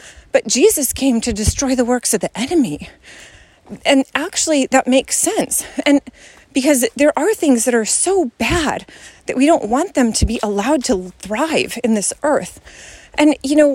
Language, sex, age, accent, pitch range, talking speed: English, female, 30-49, American, 230-295 Hz, 175 wpm